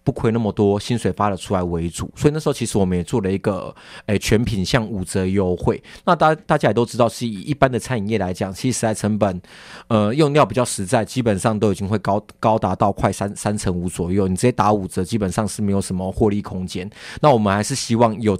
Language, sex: Chinese, male